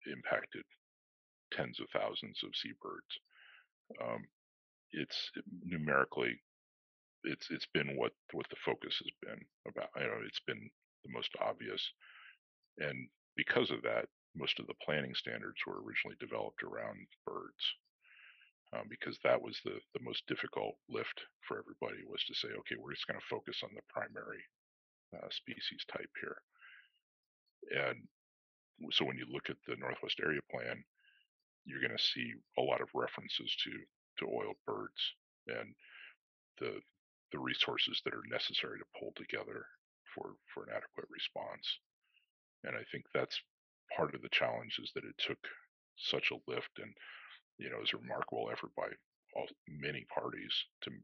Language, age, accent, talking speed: English, 50-69, American, 155 wpm